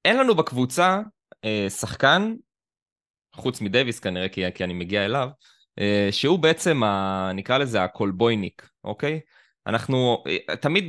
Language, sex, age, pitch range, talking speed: Hebrew, male, 20-39, 100-135 Hz, 125 wpm